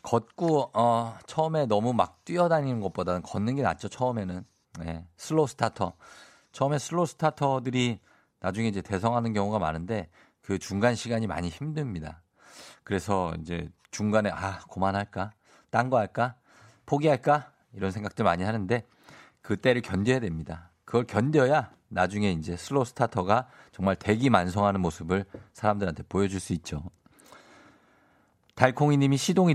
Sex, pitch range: male, 95-130 Hz